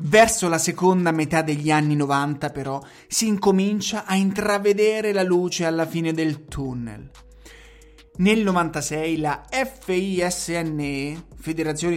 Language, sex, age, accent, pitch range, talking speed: Italian, male, 30-49, native, 145-200 Hz, 115 wpm